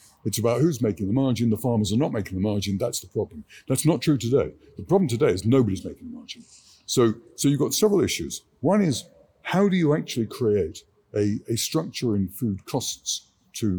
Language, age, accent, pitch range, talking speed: English, 50-69, British, 105-135 Hz, 210 wpm